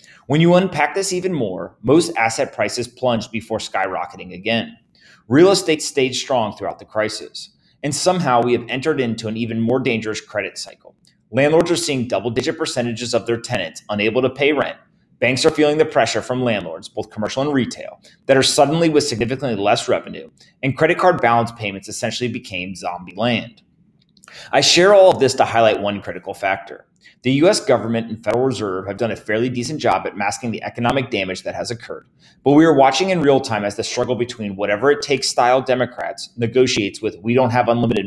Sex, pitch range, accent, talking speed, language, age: male, 110-140 Hz, American, 195 wpm, English, 30-49